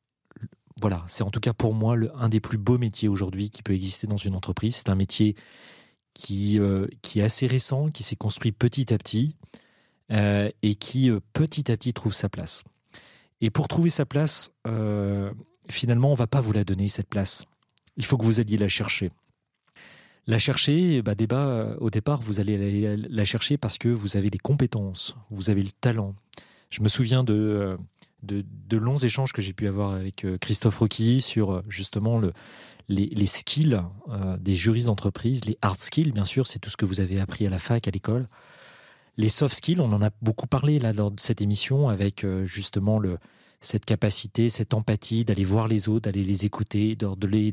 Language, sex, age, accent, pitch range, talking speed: French, male, 40-59, French, 100-120 Hz, 205 wpm